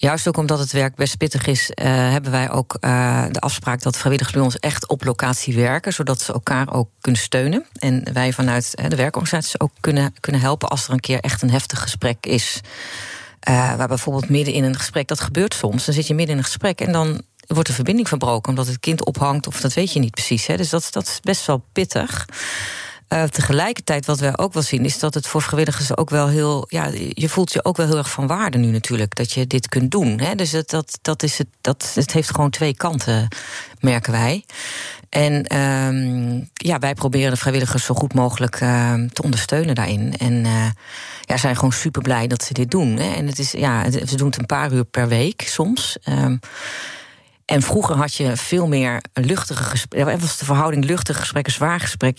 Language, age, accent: Dutch, 40-59, Dutch